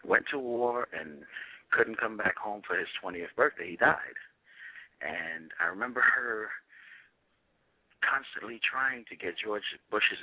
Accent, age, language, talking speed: American, 50-69, English, 140 wpm